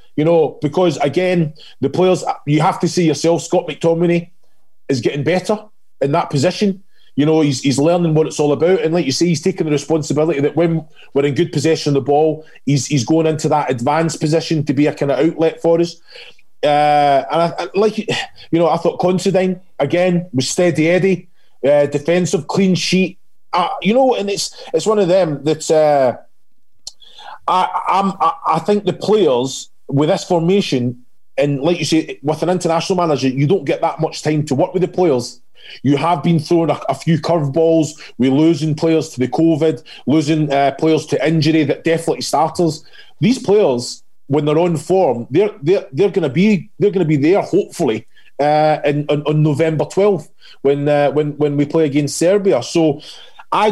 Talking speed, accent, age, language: 195 wpm, British, 30-49, English